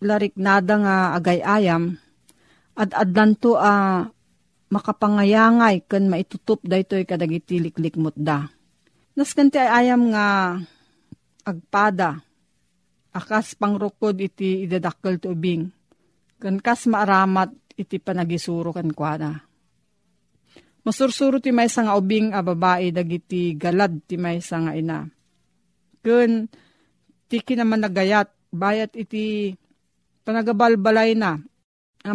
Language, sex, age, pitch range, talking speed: Filipino, female, 40-59, 175-220 Hz, 105 wpm